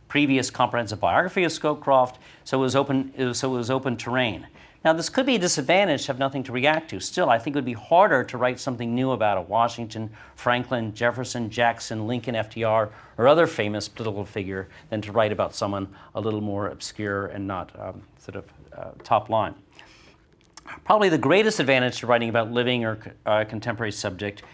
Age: 50-69